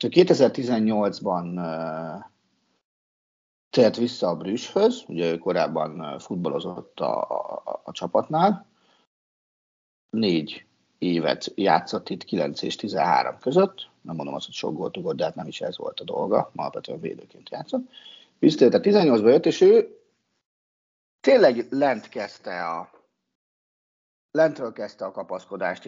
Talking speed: 125 wpm